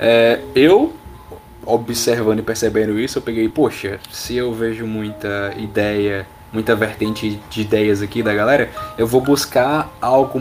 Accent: Brazilian